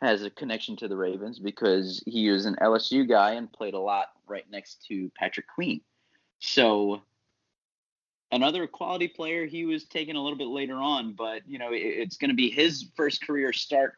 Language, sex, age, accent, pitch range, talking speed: English, male, 30-49, American, 95-115 Hz, 195 wpm